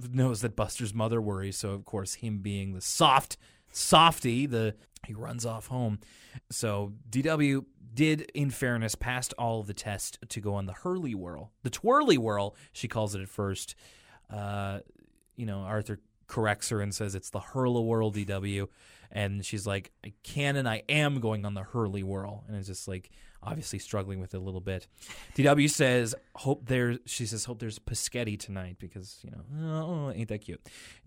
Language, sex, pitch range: English, male, 105-135 Hz